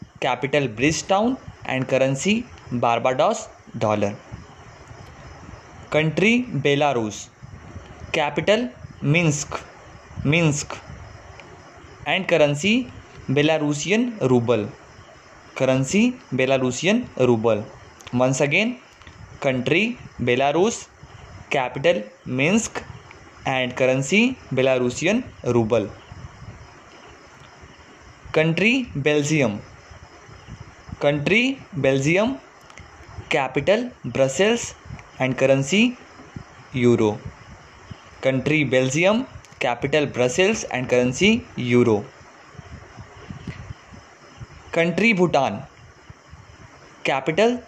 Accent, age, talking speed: native, 20-39, 60 wpm